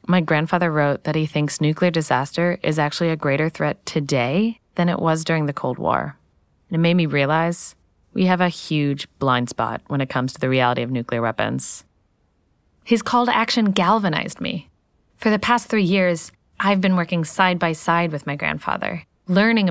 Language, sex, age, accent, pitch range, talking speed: English, female, 10-29, American, 150-195 Hz, 190 wpm